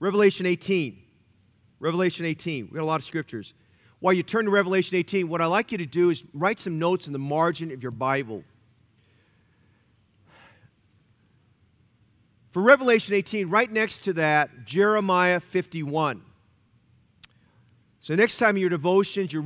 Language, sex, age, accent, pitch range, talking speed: English, male, 40-59, American, 120-180 Hz, 150 wpm